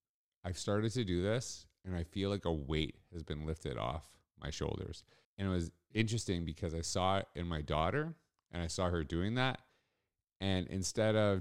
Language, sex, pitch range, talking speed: English, male, 80-100 Hz, 195 wpm